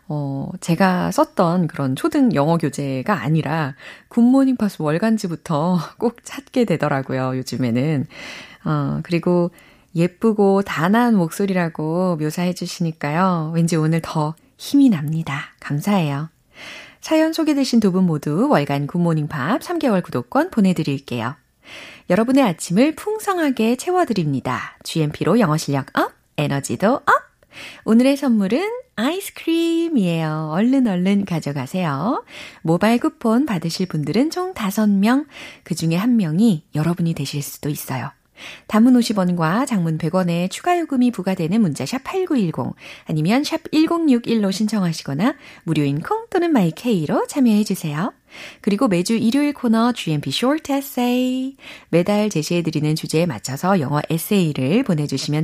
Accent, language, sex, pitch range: native, Korean, female, 160-260 Hz